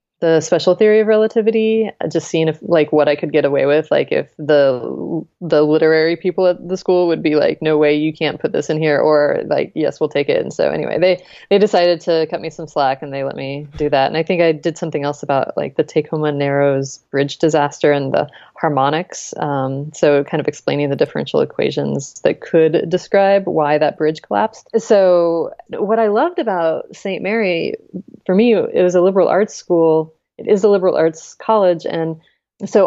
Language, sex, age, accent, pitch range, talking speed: English, female, 20-39, American, 150-185 Hz, 205 wpm